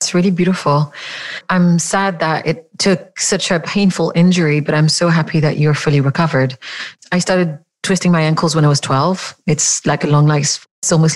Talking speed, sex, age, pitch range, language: 195 wpm, female, 30-49, 155-190 Hz, English